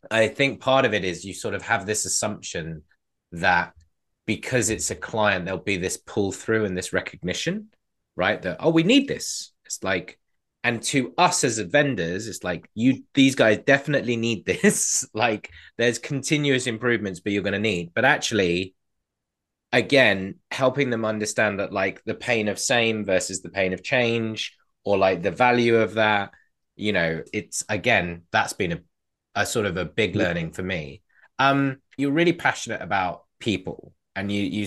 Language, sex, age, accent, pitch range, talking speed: English, male, 20-39, British, 90-125 Hz, 175 wpm